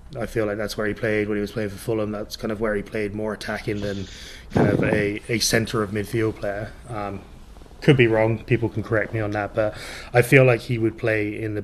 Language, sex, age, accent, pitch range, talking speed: English, male, 20-39, British, 100-115 Hz, 255 wpm